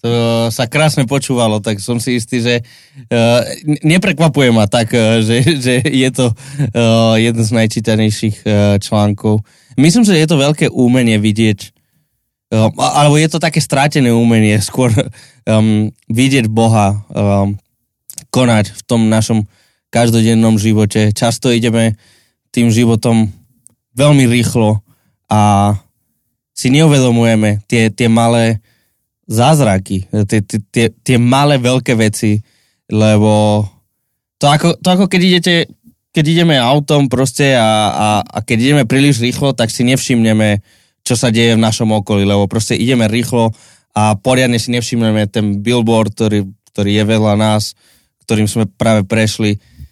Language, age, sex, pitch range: Slovak, 20-39, male, 110-130 Hz